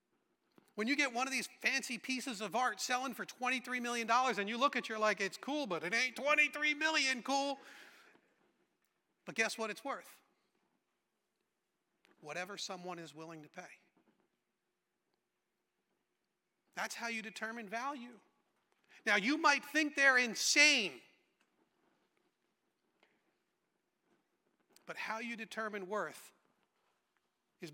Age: 40-59